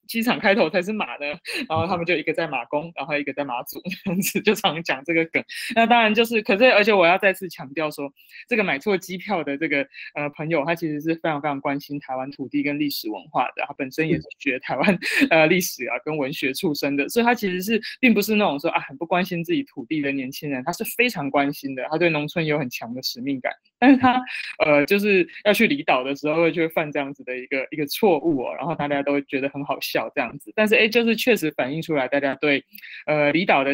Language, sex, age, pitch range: Chinese, male, 20-39, 145-200 Hz